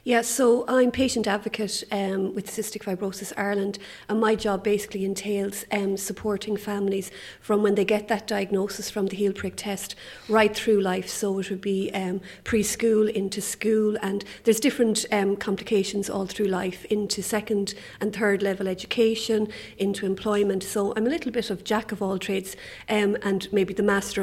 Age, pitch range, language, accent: 30-49, 195-215 Hz, English, Irish